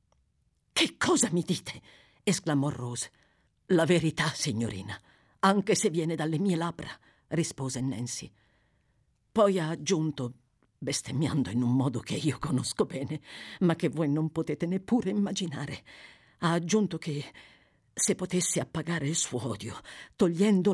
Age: 50-69